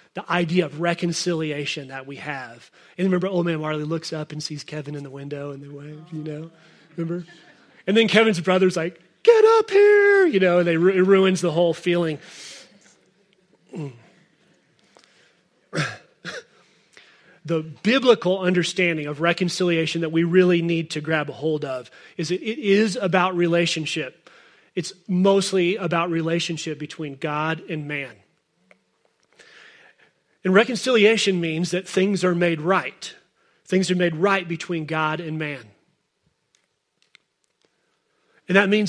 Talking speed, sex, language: 140 wpm, male, English